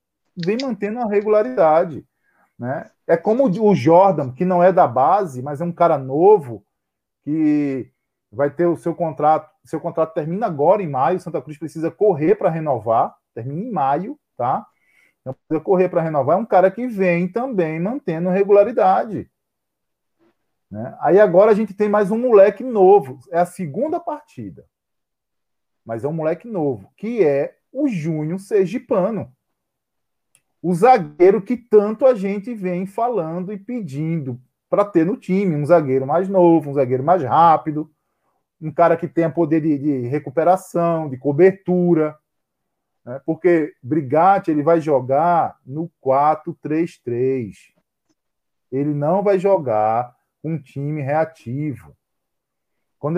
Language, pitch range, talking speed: Portuguese, 150-195 Hz, 140 wpm